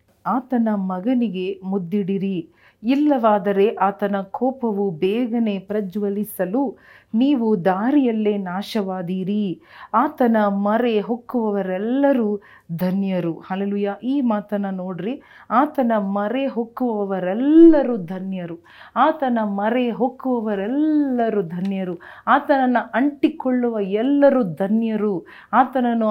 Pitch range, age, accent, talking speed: 195-245 Hz, 40-59, native, 75 wpm